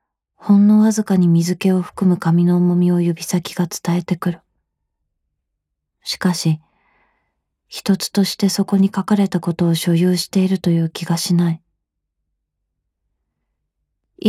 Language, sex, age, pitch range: Japanese, female, 20-39, 165-190 Hz